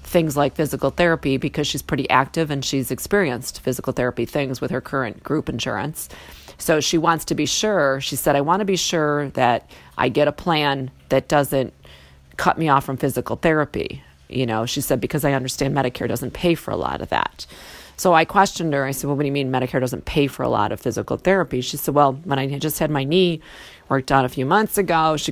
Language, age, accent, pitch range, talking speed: English, 40-59, American, 130-160 Hz, 230 wpm